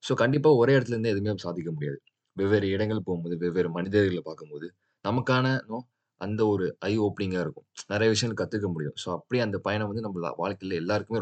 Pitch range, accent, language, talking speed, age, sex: 90-120 Hz, native, Tamil, 165 wpm, 20-39, male